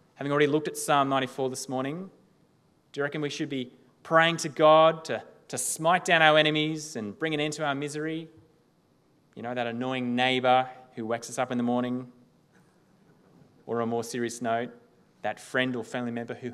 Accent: Australian